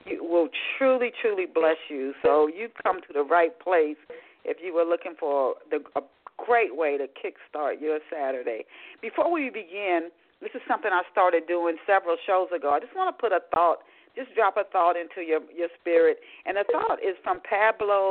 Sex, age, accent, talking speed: female, 40-59, American, 195 wpm